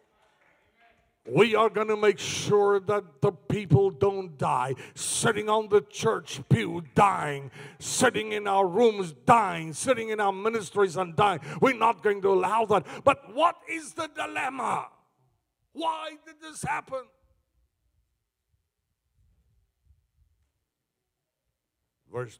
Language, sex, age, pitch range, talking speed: English, male, 50-69, 135-200 Hz, 120 wpm